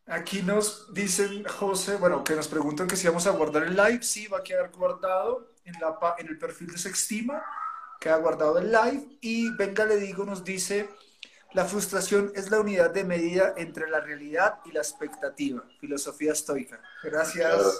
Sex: male